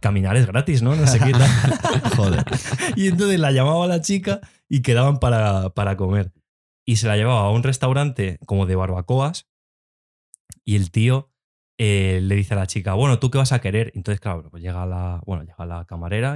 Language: Spanish